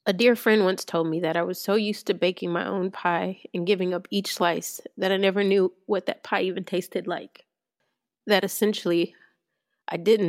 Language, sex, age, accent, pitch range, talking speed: English, female, 30-49, American, 185-230 Hz, 205 wpm